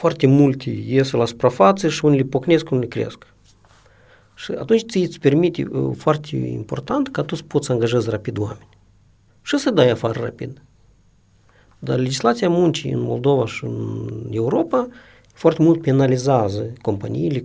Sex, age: male, 50-69